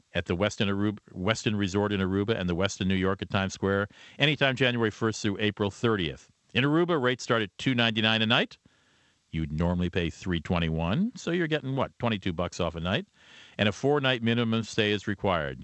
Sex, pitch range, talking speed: male, 95-120 Hz, 190 wpm